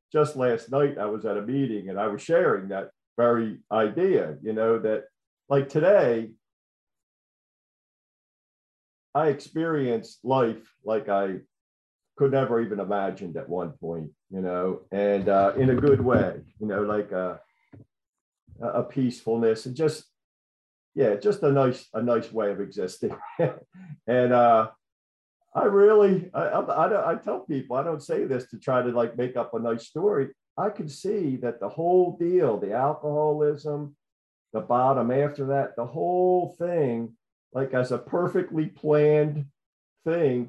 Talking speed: 150 wpm